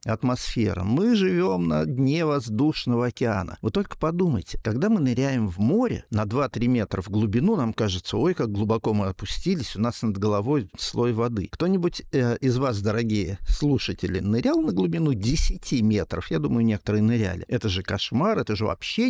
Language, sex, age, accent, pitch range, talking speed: Russian, male, 50-69, native, 105-145 Hz, 170 wpm